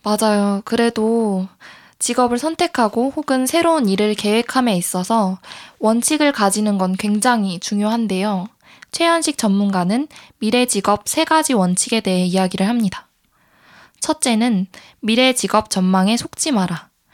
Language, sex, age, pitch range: Korean, female, 20-39, 195-260 Hz